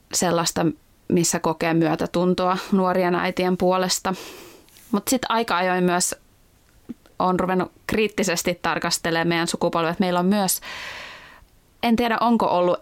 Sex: female